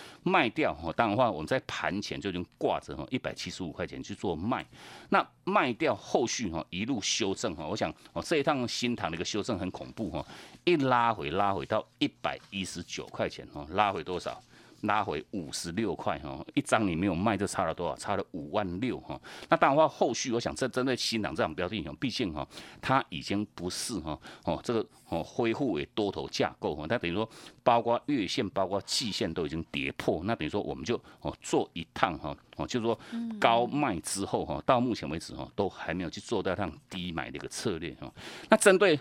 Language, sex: Chinese, male